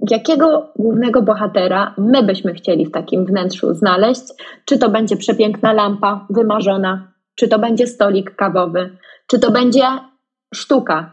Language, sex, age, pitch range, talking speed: Polish, female, 20-39, 200-240 Hz, 135 wpm